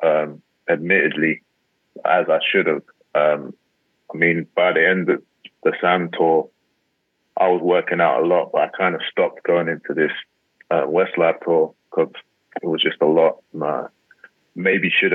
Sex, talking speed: male, 175 wpm